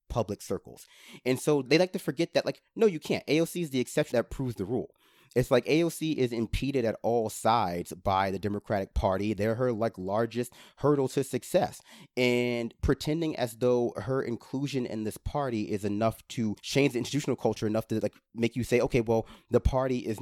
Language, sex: English, male